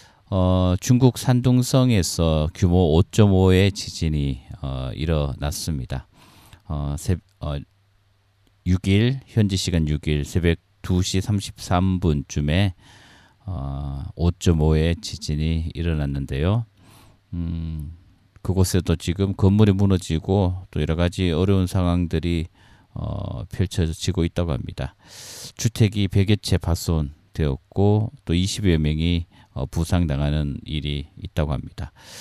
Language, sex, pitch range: Korean, male, 80-105 Hz